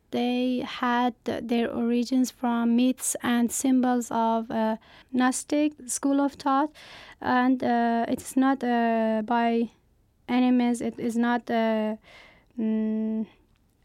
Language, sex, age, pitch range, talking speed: Persian, female, 20-39, 230-255 Hz, 115 wpm